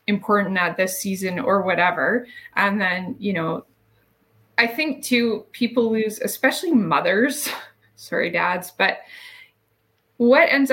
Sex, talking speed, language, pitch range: female, 125 wpm, English, 190-245 Hz